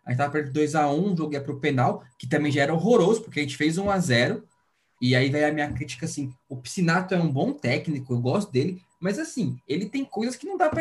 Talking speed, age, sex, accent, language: 260 wpm, 20-39, male, Brazilian, Portuguese